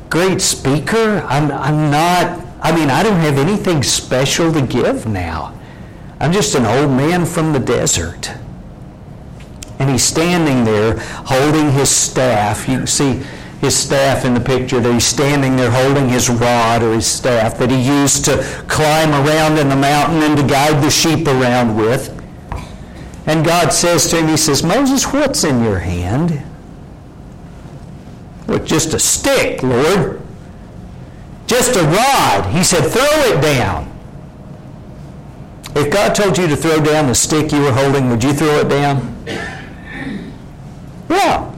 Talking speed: 155 wpm